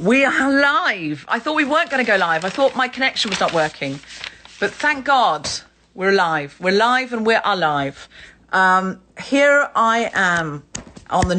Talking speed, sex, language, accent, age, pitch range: 185 wpm, female, English, British, 40-59, 170-230 Hz